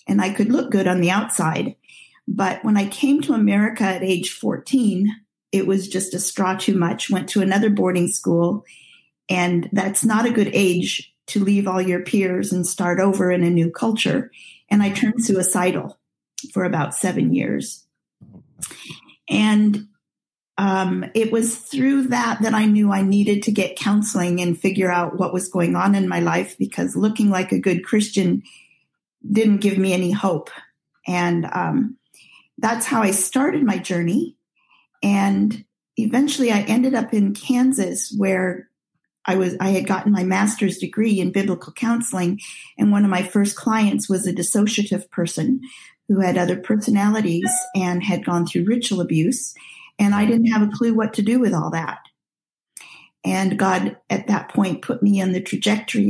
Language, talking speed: English, 170 wpm